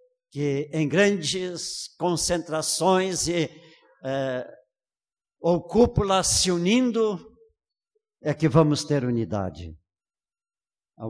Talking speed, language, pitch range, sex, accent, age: 80 wpm, Portuguese, 135-205 Hz, male, Brazilian, 60-79